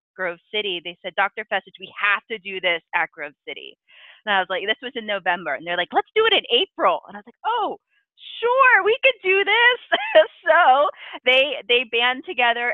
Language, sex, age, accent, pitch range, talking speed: English, female, 30-49, American, 175-220 Hz, 210 wpm